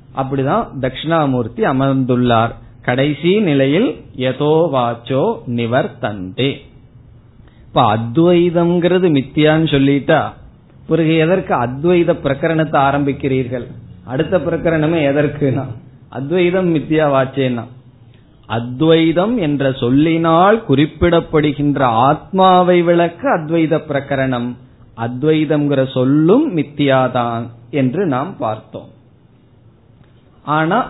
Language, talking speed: Tamil, 70 wpm